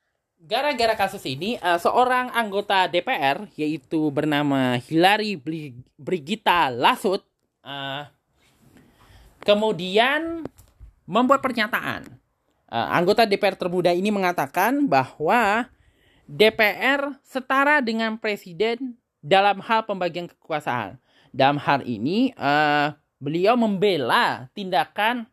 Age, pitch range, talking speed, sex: 20-39, 155-220 Hz, 90 wpm, male